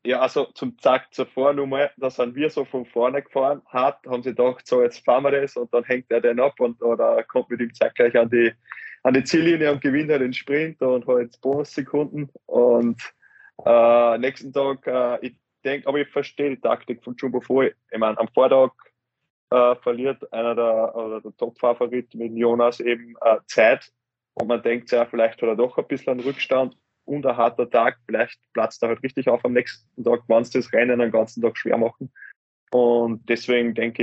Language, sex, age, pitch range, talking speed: German, male, 20-39, 115-130 Hz, 205 wpm